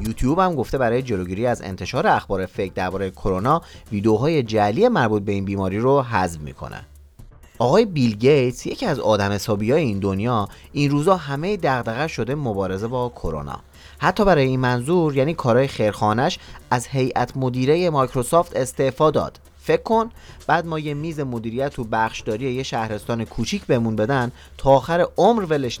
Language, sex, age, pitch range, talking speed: Persian, male, 30-49, 100-150 Hz, 155 wpm